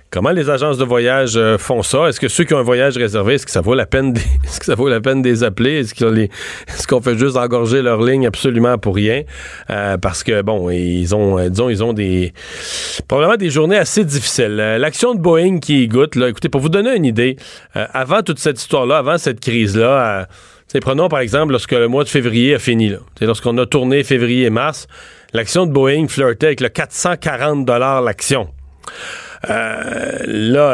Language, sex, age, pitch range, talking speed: French, male, 40-59, 110-140 Hz, 195 wpm